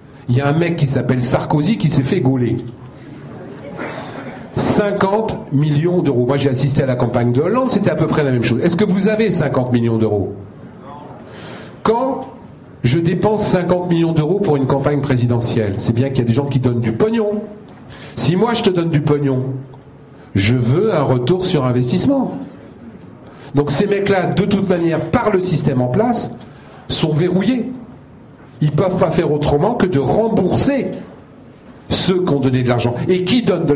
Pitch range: 125-180 Hz